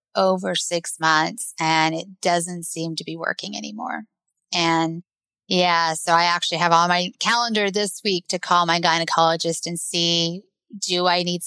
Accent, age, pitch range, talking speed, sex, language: American, 20-39, 170-210 Hz, 160 wpm, female, English